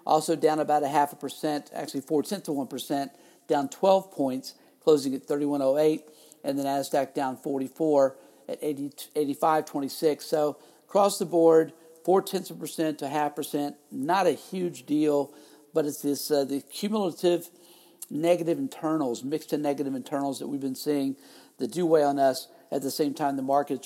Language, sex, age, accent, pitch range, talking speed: English, male, 50-69, American, 135-165 Hz, 175 wpm